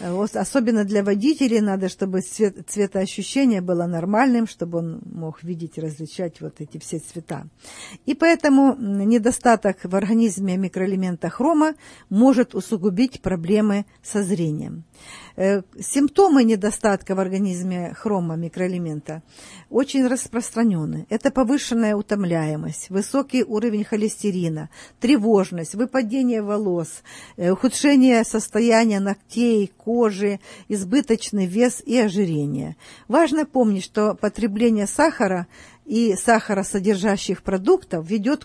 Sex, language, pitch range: female, Russian, 190-240 Hz